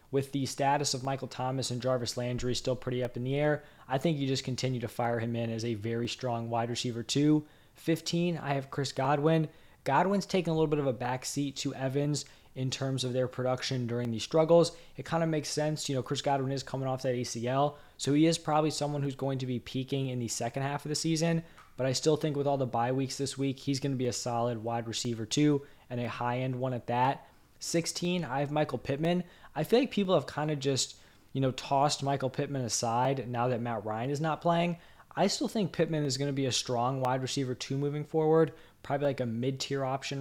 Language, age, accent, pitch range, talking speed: English, 20-39, American, 125-150 Hz, 235 wpm